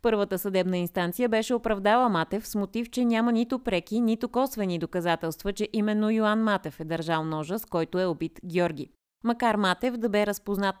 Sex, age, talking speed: female, 20-39, 180 wpm